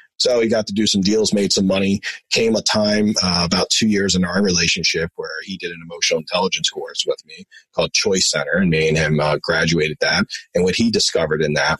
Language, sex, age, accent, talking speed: English, male, 30-49, American, 230 wpm